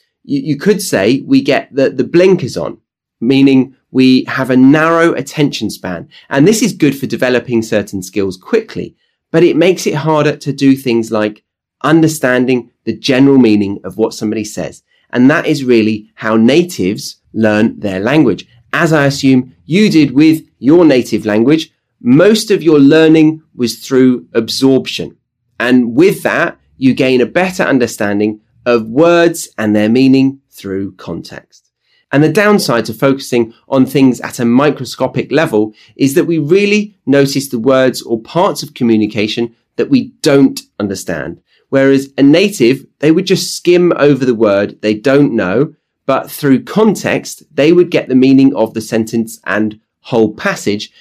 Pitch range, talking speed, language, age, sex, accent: 115-160 Hz, 160 wpm, English, 30-49, male, British